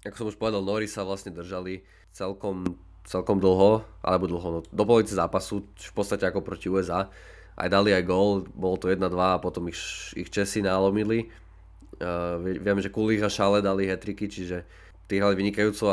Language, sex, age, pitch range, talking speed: Slovak, male, 20-39, 95-105 Hz, 175 wpm